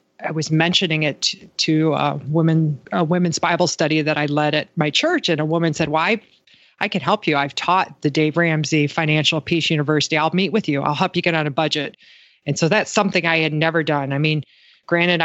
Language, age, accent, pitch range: English, 30-49, American, 150-175 Hz